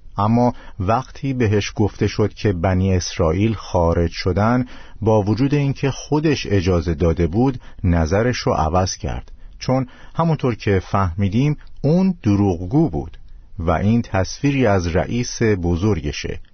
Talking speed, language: 125 wpm, Persian